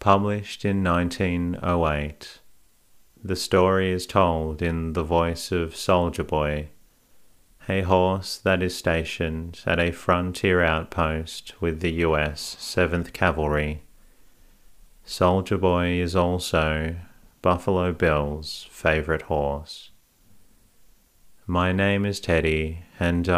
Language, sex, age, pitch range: English, male, 40-59, 80-95 Hz